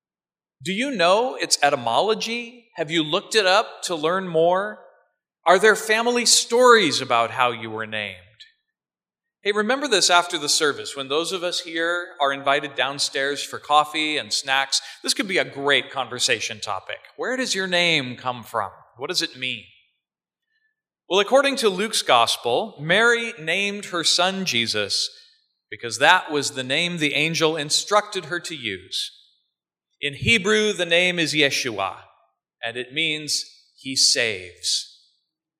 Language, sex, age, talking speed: English, male, 40-59, 150 wpm